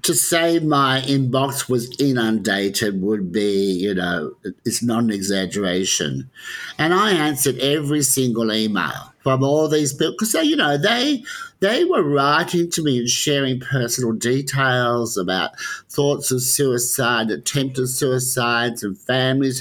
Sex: male